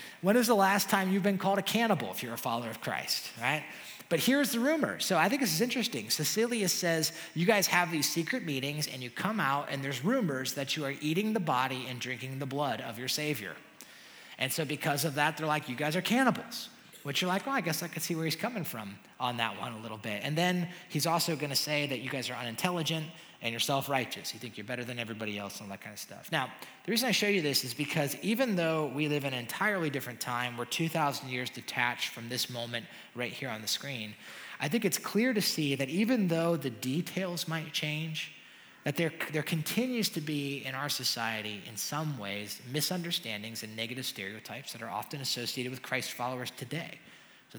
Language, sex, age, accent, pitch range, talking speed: English, male, 30-49, American, 125-175 Hz, 225 wpm